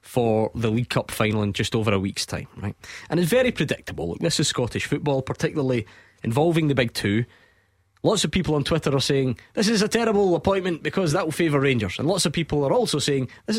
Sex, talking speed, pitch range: male, 220 wpm, 105-160 Hz